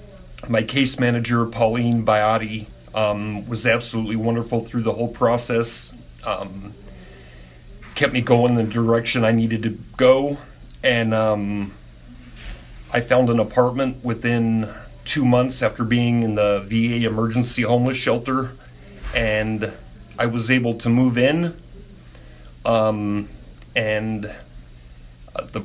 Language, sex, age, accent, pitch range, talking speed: English, male, 40-59, American, 105-125 Hz, 120 wpm